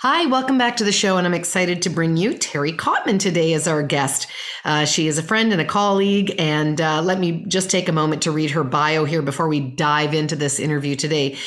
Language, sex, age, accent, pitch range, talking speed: English, female, 40-59, American, 150-200 Hz, 240 wpm